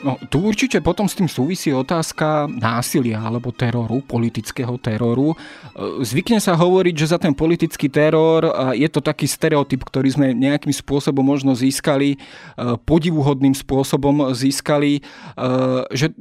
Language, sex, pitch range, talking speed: Slovak, male, 130-150 Hz, 130 wpm